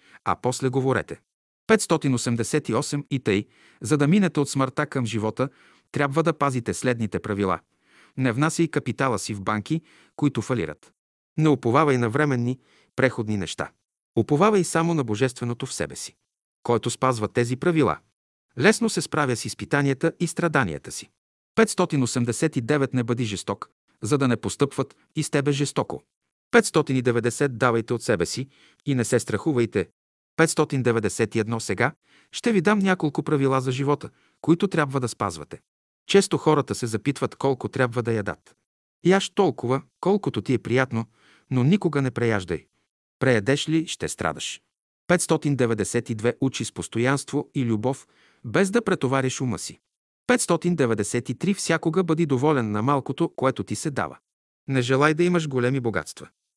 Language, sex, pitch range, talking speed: Bulgarian, male, 115-155 Hz, 145 wpm